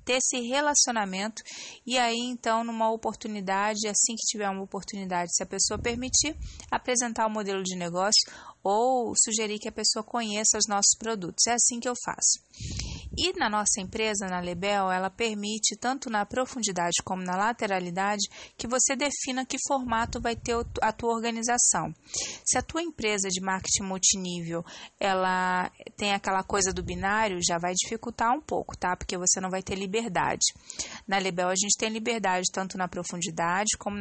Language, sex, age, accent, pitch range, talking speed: English, female, 20-39, Brazilian, 190-235 Hz, 170 wpm